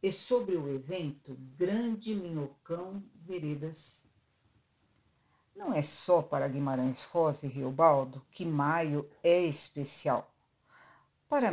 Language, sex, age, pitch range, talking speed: Portuguese, female, 60-79, 140-180 Hz, 100 wpm